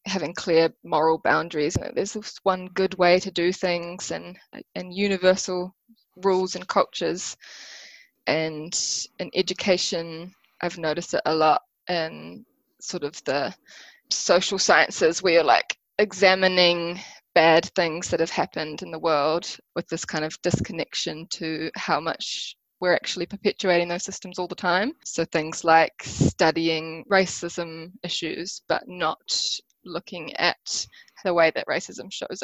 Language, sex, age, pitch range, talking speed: English, female, 20-39, 165-190 Hz, 145 wpm